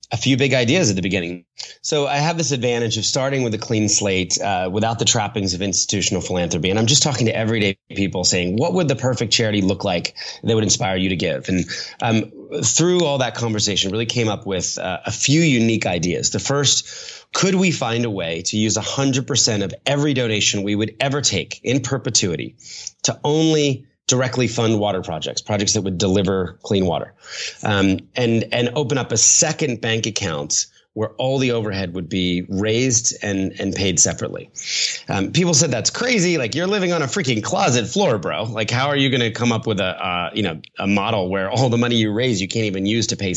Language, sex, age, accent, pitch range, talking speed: English, male, 30-49, American, 100-135 Hz, 210 wpm